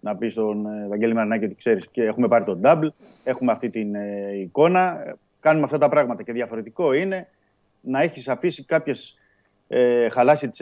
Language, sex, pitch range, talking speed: Greek, male, 100-130 Hz, 170 wpm